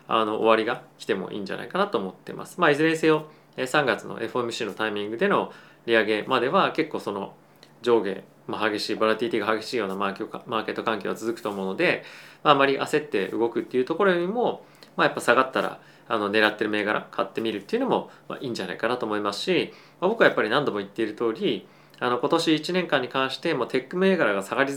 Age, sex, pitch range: 20-39, male, 110-155 Hz